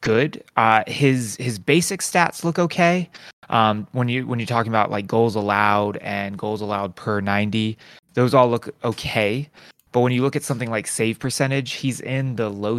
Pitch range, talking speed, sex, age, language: 105-130 Hz, 190 wpm, male, 20-39, English